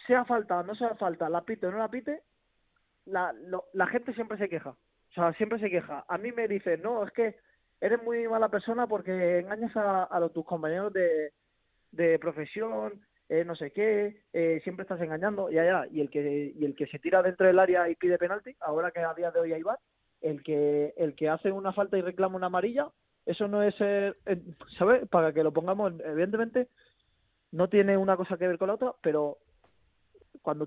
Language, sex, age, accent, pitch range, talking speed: Spanish, male, 20-39, Spanish, 160-210 Hz, 215 wpm